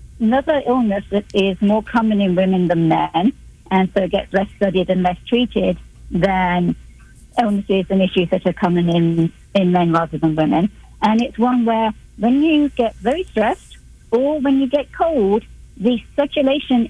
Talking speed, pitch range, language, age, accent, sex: 170 wpm, 185-230 Hz, English, 50-69, British, female